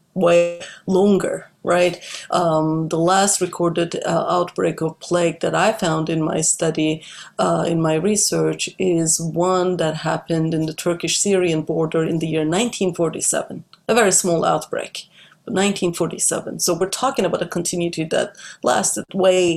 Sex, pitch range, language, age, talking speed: female, 170-205 Hz, English, 30-49, 145 wpm